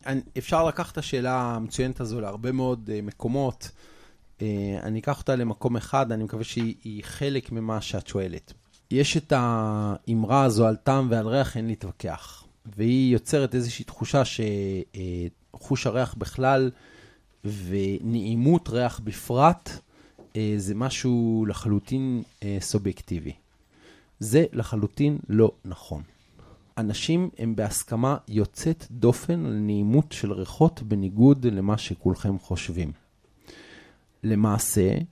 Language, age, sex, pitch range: Hebrew, 30-49, male, 105-130 Hz